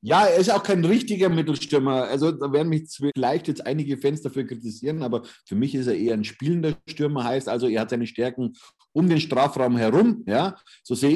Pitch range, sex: 115-150 Hz, male